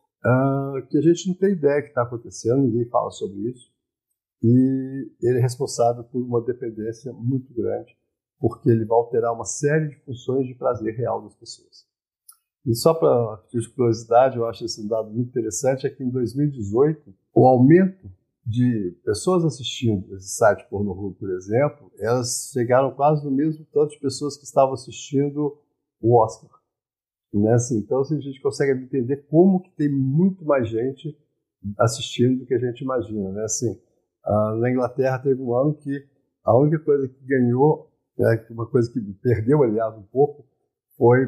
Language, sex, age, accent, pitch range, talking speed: Portuguese, male, 50-69, Brazilian, 115-145 Hz, 170 wpm